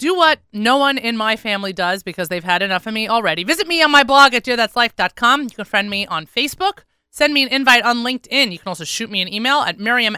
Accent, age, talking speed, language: American, 30-49, 255 wpm, English